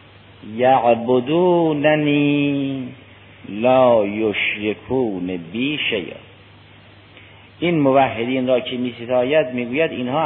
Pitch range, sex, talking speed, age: 105-140 Hz, male, 80 wpm, 50-69